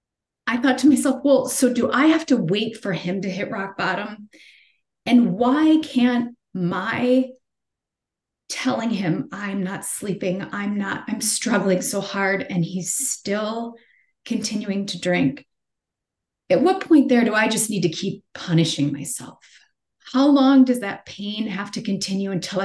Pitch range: 190-255 Hz